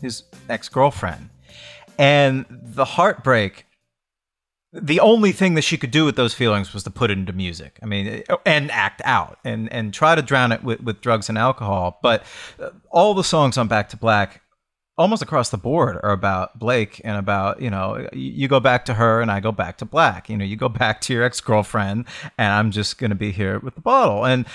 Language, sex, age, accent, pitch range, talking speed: English, male, 40-59, American, 110-140 Hz, 210 wpm